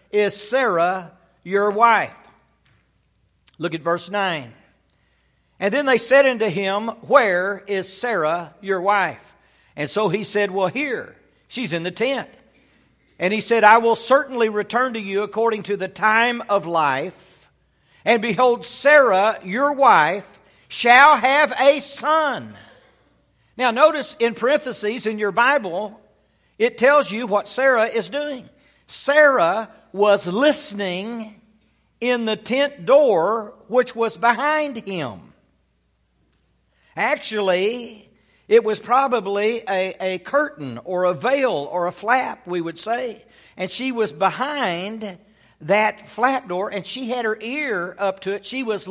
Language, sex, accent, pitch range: English, male, American, 195-250 Hz